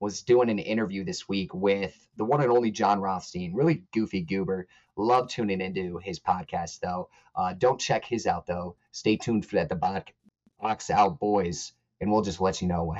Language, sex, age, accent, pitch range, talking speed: English, male, 30-49, American, 95-125 Hz, 200 wpm